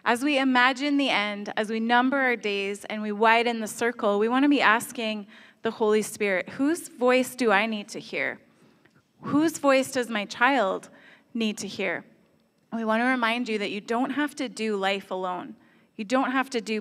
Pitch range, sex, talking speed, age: 215-260 Hz, female, 200 wpm, 20-39